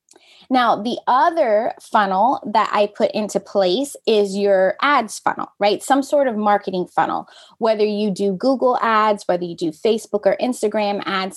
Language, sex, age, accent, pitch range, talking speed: English, female, 20-39, American, 190-240 Hz, 165 wpm